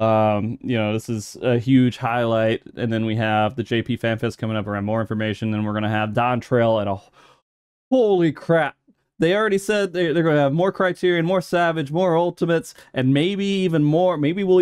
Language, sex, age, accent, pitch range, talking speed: English, male, 20-39, American, 115-165 Hz, 200 wpm